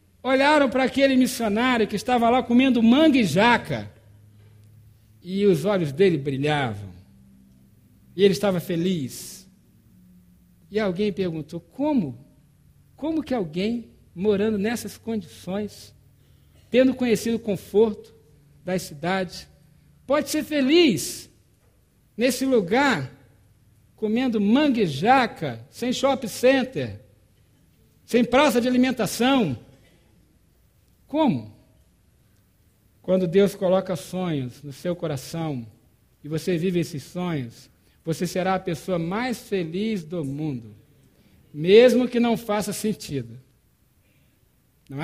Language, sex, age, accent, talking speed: Portuguese, male, 60-79, Brazilian, 105 wpm